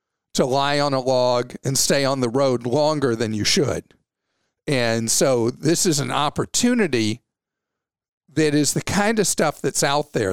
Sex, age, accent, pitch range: male, 50-69, American, 130-175 Hz